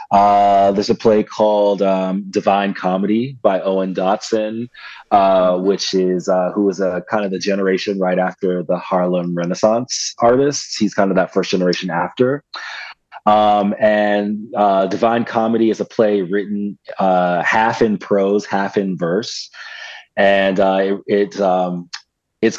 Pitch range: 90-105 Hz